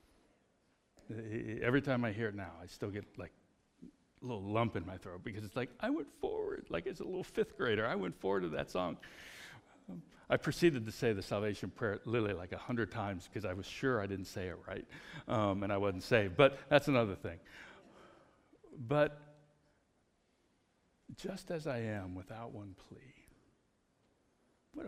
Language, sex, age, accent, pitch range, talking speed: English, male, 60-79, American, 105-150 Hz, 175 wpm